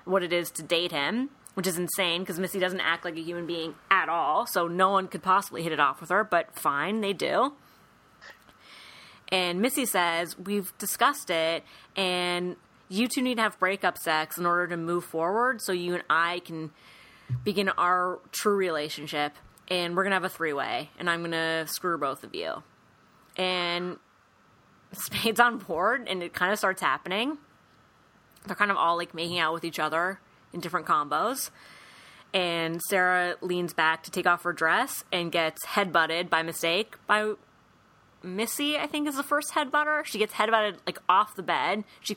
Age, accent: 30-49, American